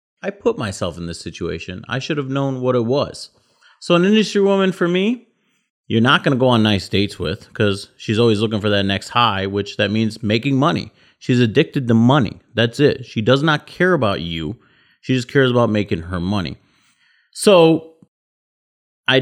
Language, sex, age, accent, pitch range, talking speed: English, male, 30-49, American, 100-135 Hz, 195 wpm